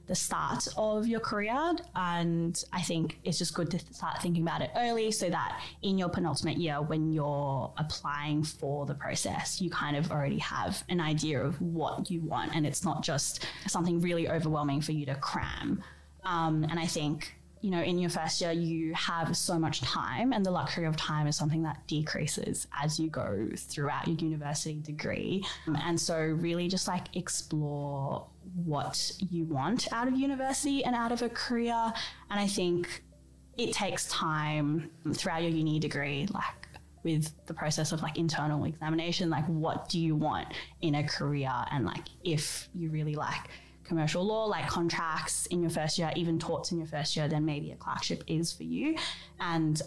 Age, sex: 10-29, female